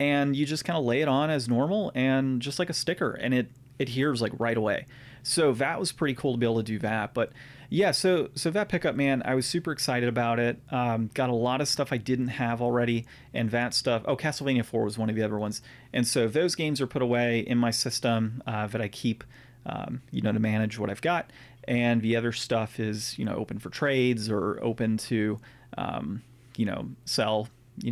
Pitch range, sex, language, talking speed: 115-135 Hz, male, English, 230 wpm